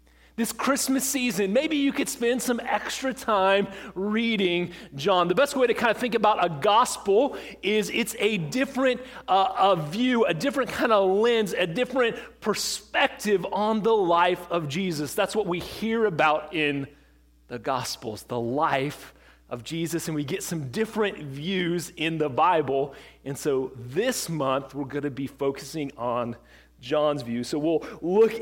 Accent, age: American, 30-49